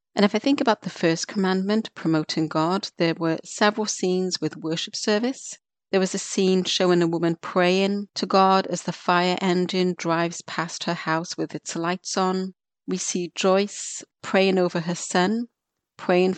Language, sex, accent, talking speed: English, female, British, 170 wpm